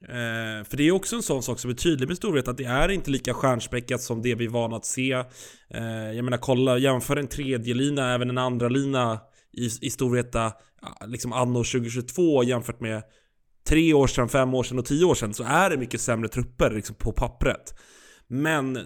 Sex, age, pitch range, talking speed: male, 20-39, 120-145 Hz, 210 wpm